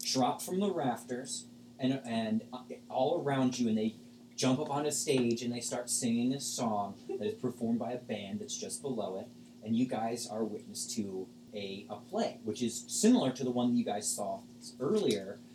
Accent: American